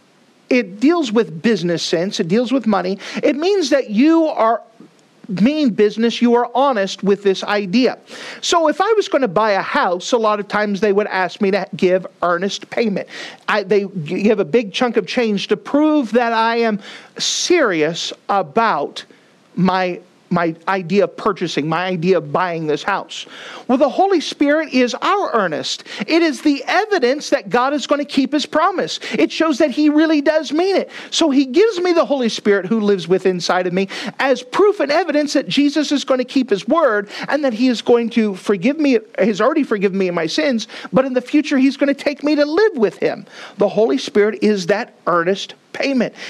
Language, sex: English, male